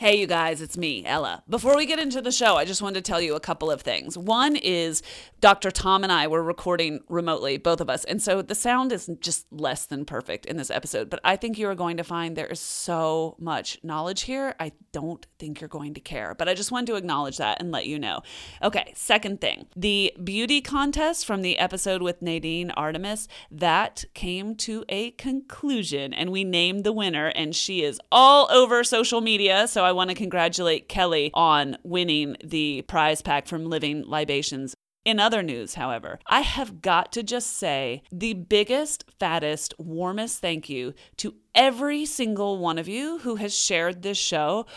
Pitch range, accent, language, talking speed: 160-210 Hz, American, English, 200 wpm